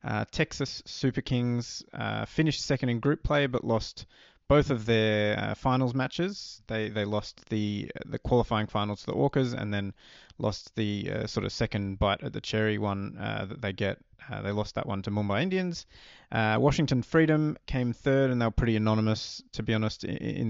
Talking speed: 195 wpm